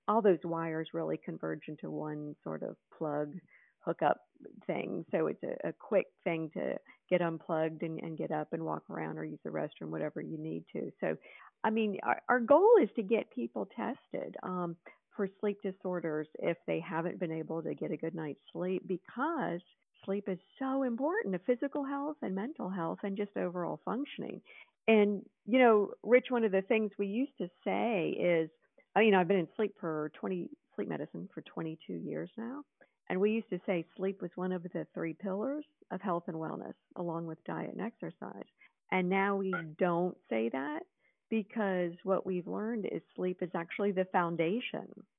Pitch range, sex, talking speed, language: 165-215 Hz, female, 185 wpm, English